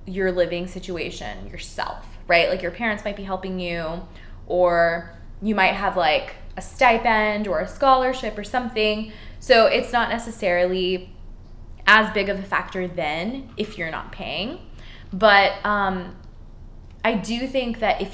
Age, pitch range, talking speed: 20-39, 180-215 Hz, 150 wpm